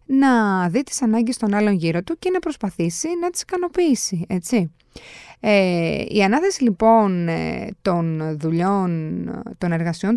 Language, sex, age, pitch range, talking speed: Greek, female, 20-39, 175-260 Hz, 135 wpm